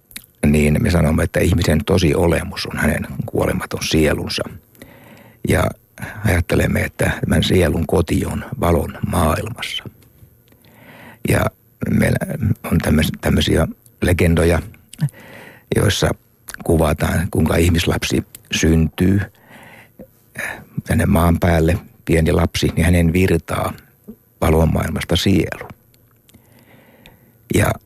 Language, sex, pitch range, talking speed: Finnish, male, 80-115 Hz, 90 wpm